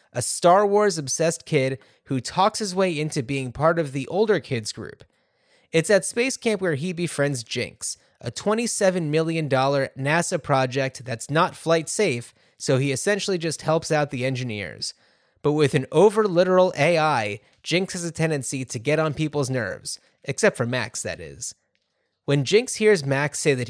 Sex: male